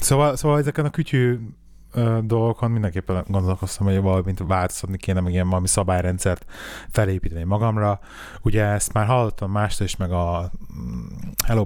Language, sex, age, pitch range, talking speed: Hungarian, male, 30-49, 90-110 Hz, 150 wpm